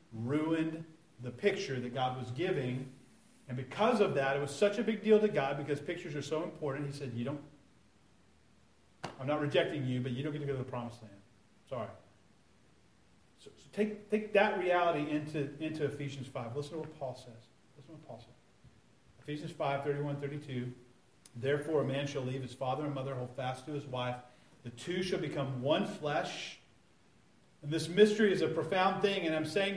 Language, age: English, 40-59